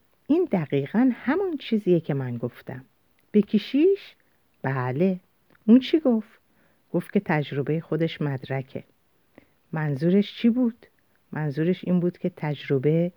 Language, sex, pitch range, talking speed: Persian, female, 140-185 Hz, 115 wpm